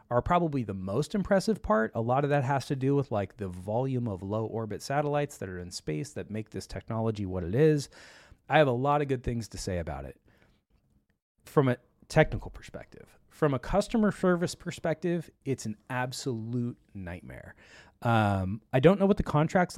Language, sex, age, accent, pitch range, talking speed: English, male, 30-49, American, 110-150 Hz, 190 wpm